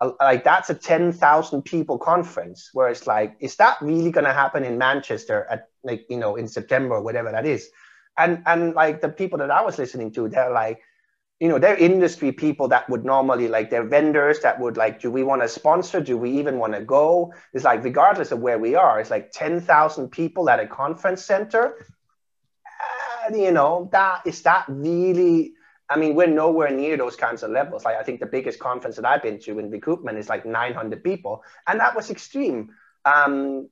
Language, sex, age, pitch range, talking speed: English, male, 30-49, 130-175 Hz, 210 wpm